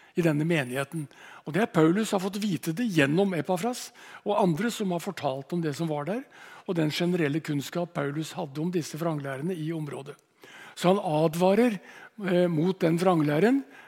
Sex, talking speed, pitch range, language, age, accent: male, 175 wpm, 150-185 Hz, English, 60-79, Norwegian